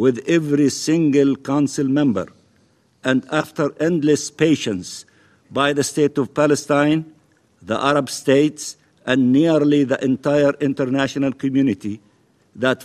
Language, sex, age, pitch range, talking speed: Italian, male, 50-69, 140-170 Hz, 110 wpm